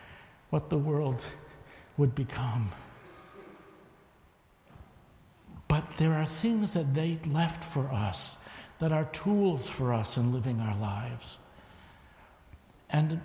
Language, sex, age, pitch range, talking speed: English, male, 60-79, 105-155 Hz, 110 wpm